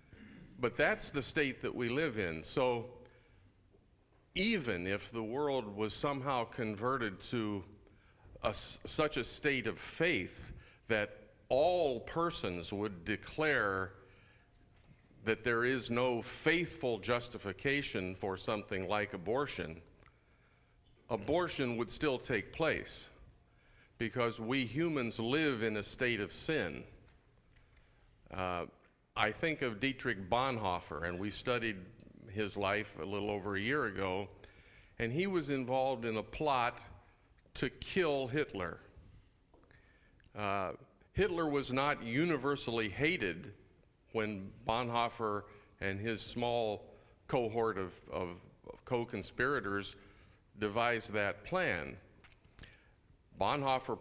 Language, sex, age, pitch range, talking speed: English, male, 50-69, 100-125 Hz, 105 wpm